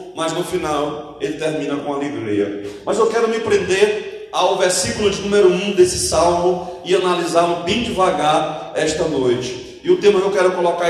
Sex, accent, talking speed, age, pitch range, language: male, Brazilian, 175 wpm, 40-59, 170-260 Hz, Portuguese